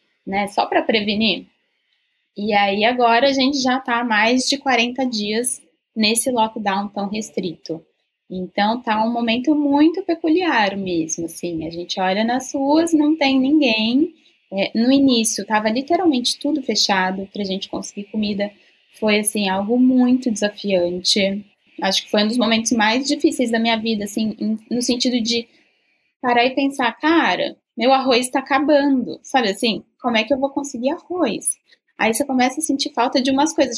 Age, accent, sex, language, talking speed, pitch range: 10-29, Brazilian, female, Portuguese, 165 wpm, 210-280 Hz